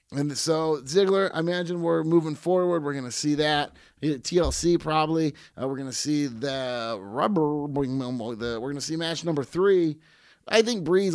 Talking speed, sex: 180 wpm, male